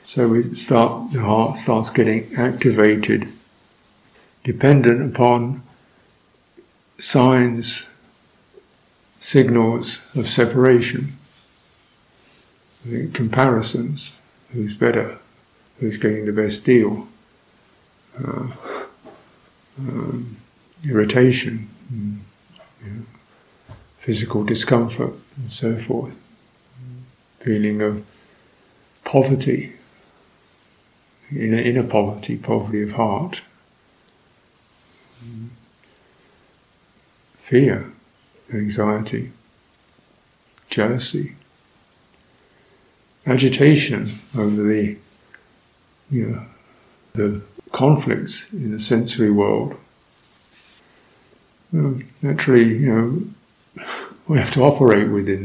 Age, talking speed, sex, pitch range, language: 50-69, 70 wpm, male, 110-130 Hz, English